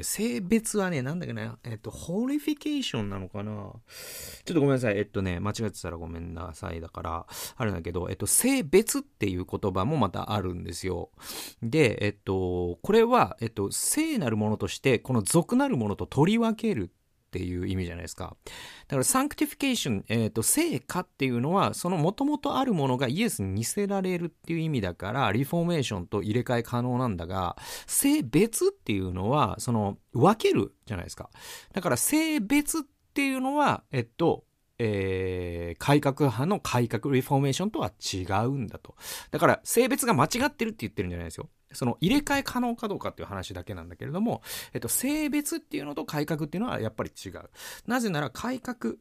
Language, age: Japanese, 40-59